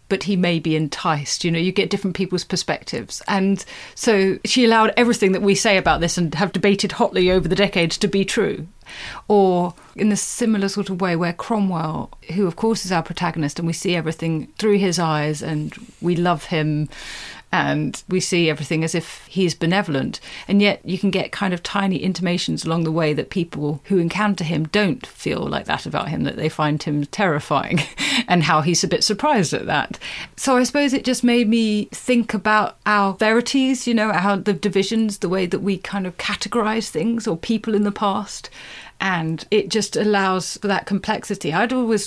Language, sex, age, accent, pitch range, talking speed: English, female, 30-49, British, 165-205 Hz, 200 wpm